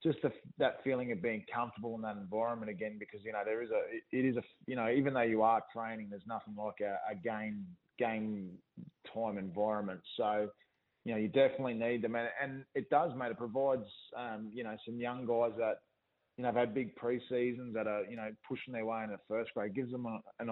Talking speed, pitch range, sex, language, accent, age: 235 wpm, 110-125 Hz, male, English, Australian, 20-39